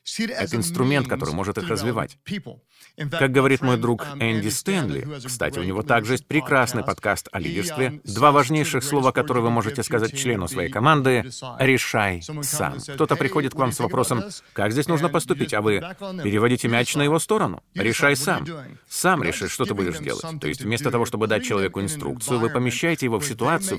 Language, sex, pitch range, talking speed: Russian, male, 110-145 Hz, 180 wpm